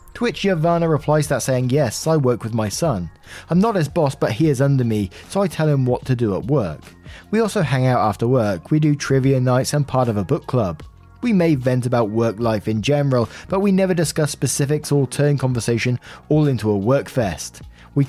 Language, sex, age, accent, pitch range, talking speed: English, male, 20-39, British, 115-150 Hz, 220 wpm